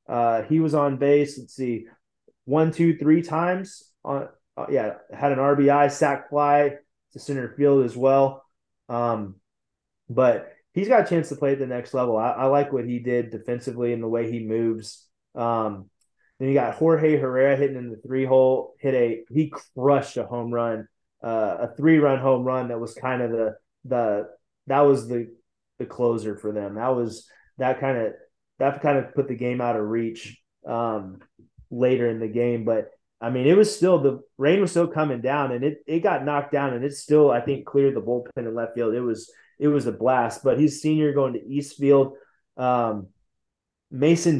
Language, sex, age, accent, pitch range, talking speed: English, male, 20-39, American, 120-145 Hz, 200 wpm